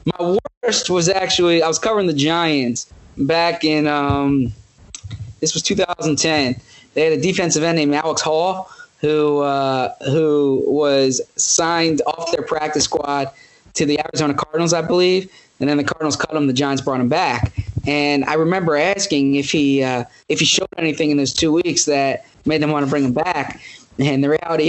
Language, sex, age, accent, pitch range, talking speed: English, male, 20-39, American, 140-165 Hz, 180 wpm